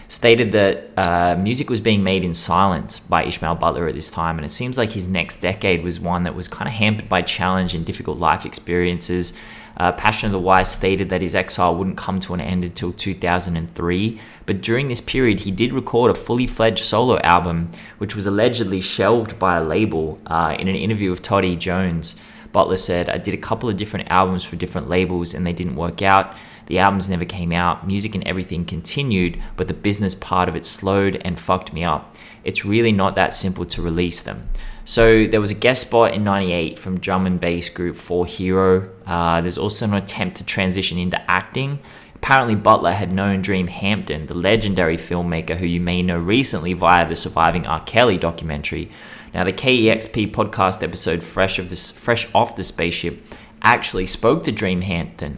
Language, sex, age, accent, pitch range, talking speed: English, male, 20-39, Australian, 85-105 Hz, 195 wpm